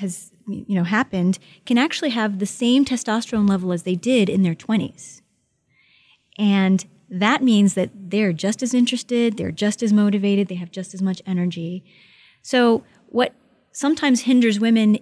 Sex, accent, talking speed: female, American, 160 wpm